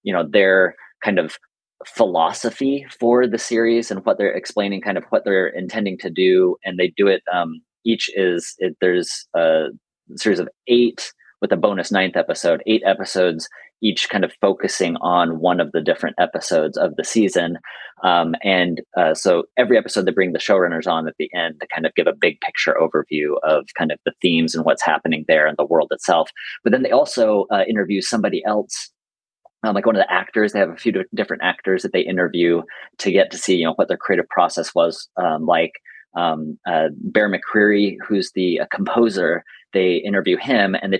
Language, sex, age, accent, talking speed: English, male, 30-49, American, 200 wpm